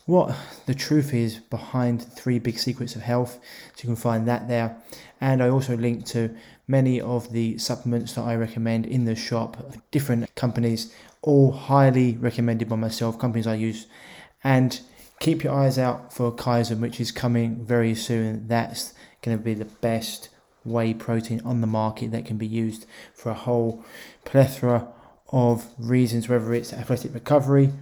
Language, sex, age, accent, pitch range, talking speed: English, male, 20-39, British, 115-125 Hz, 170 wpm